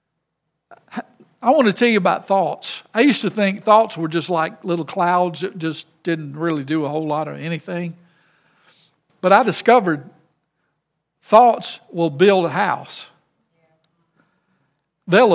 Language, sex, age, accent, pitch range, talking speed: English, male, 60-79, American, 160-195 Hz, 140 wpm